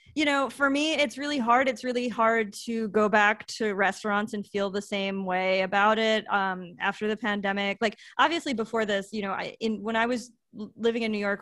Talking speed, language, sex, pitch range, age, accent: 215 wpm, English, female, 200-235 Hz, 20-39, American